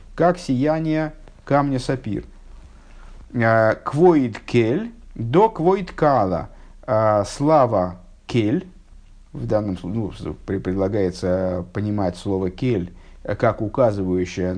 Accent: native